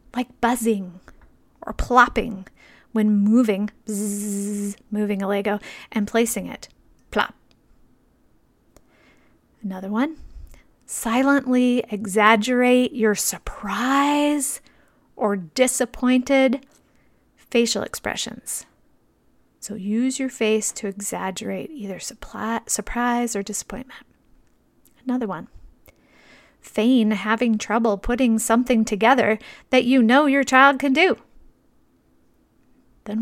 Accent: American